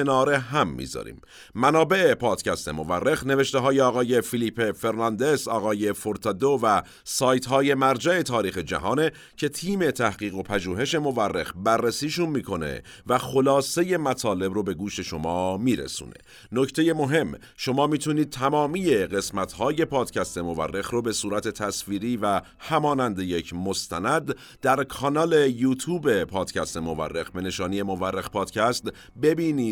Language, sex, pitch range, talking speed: Persian, male, 95-140 Hz, 120 wpm